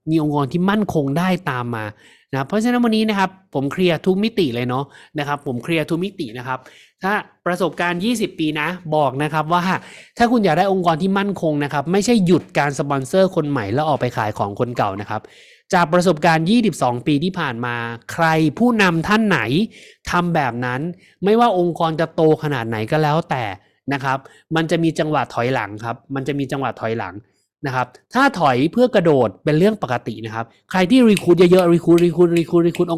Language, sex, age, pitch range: Thai, male, 20-39, 130-180 Hz